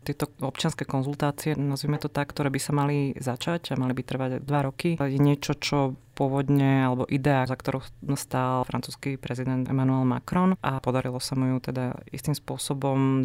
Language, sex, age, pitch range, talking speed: Slovak, female, 30-49, 120-135 Hz, 175 wpm